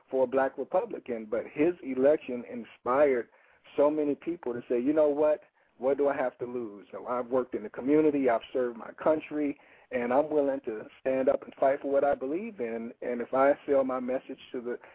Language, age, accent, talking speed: English, 40-59, American, 210 wpm